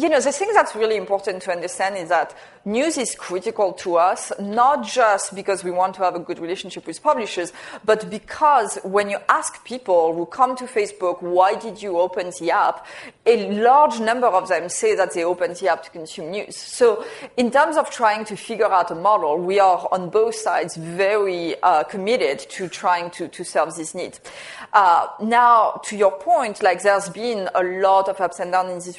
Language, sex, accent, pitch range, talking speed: English, female, French, 180-220 Hz, 205 wpm